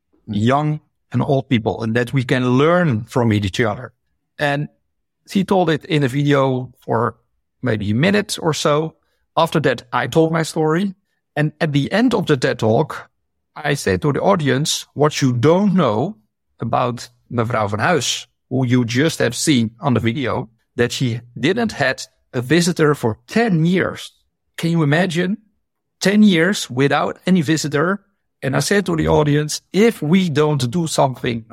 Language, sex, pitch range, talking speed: English, male, 125-180 Hz, 170 wpm